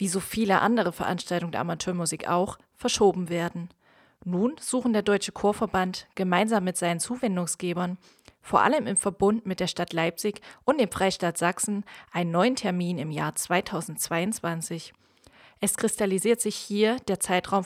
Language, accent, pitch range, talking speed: German, German, 175-205 Hz, 145 wpm